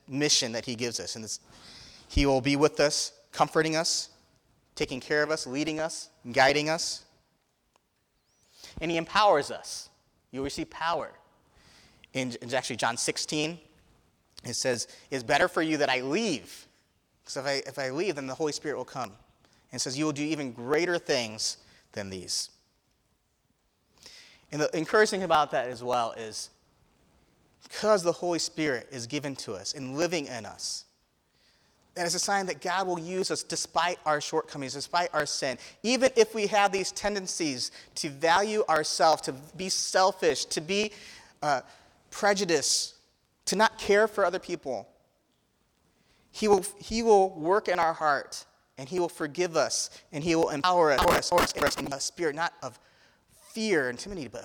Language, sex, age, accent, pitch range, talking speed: English, male, 30-49, American, 135-180 Hz, 170 wpm